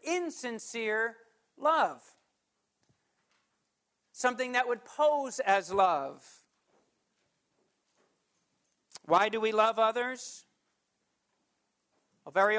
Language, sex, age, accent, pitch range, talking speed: English, male, 50-69, American, 205-250 Hz, 65 wpm